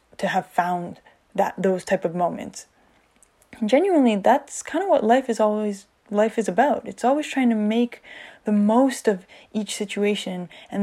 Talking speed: 170 wpm